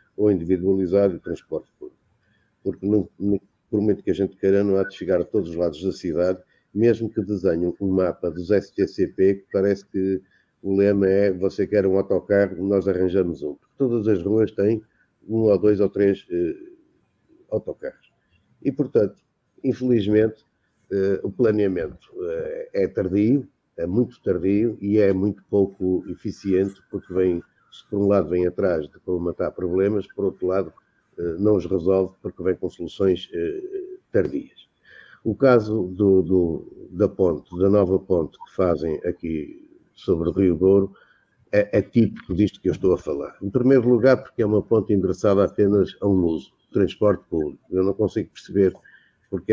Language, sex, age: Portuguese, male, 50-69